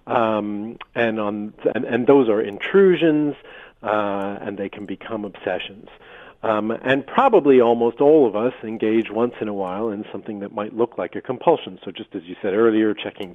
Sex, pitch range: male, 105-120 Hz